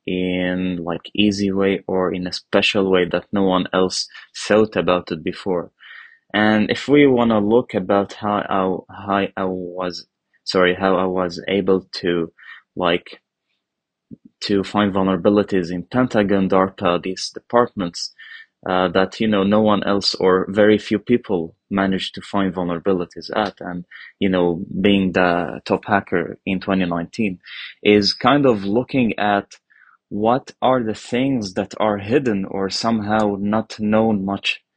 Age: 20-39